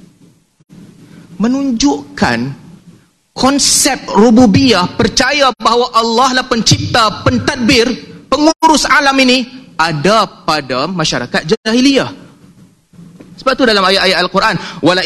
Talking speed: 90 wpm